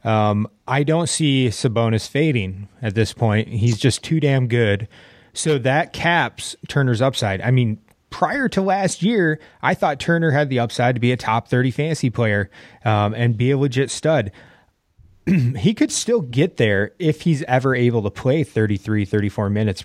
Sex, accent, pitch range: male, American, 110-145 Hz